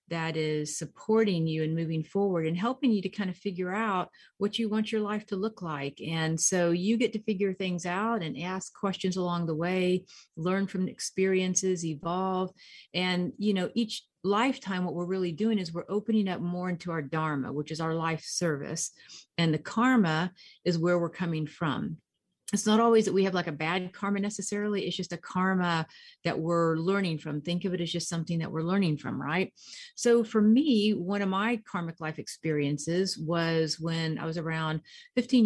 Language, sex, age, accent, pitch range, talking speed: English, female, 40-59, American, 160-195 Hz, 195 wpm